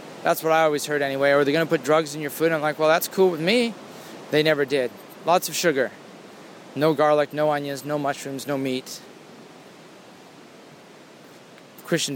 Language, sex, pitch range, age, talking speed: English, male, 115-145 Hz, 30-49, 190 wpm